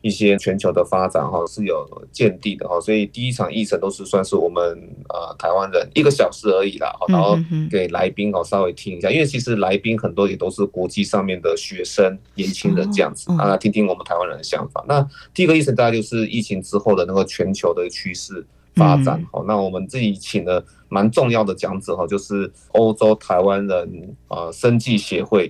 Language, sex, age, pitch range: Chinese, male, 30-49, 100-125 Hz